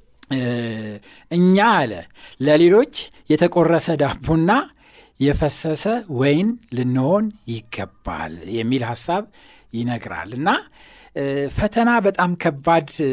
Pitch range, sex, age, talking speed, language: 115-155 Hz, male, 60-79, 70 wpm, Amharic